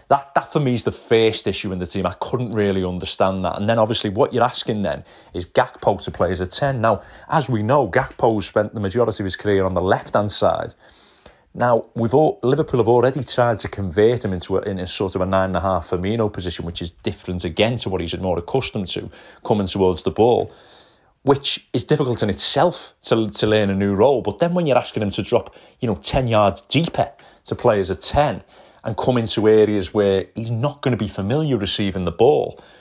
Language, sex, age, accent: English, male, 30-49, British